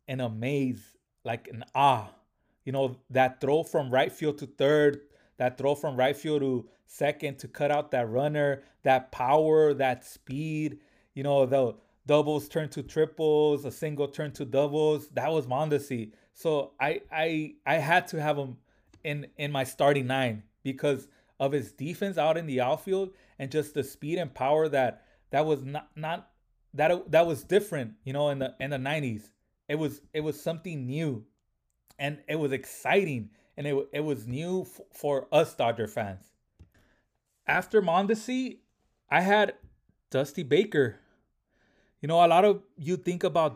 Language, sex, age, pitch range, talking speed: English, male, 20-39, 130-155 Hz, 170 wpm